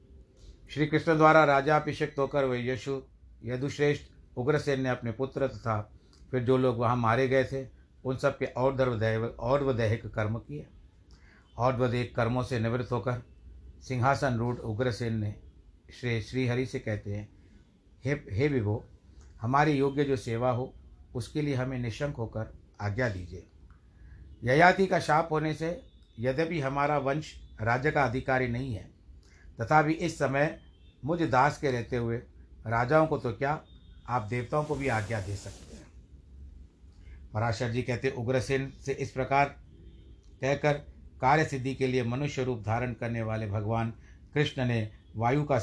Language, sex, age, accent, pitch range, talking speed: Hindi, male, 60-79, native, 105-140 Hz, 150 wpm